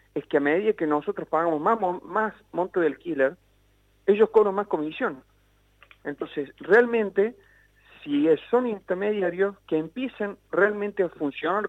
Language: Spanish